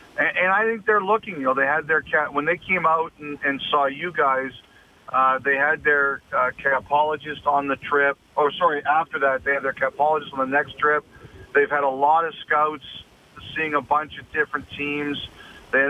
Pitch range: 140-155 Hz